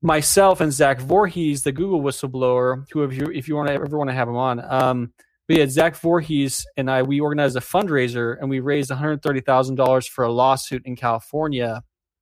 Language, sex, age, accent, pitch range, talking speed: English, male, 20-39, American, 130-160 Hz, 215 wpm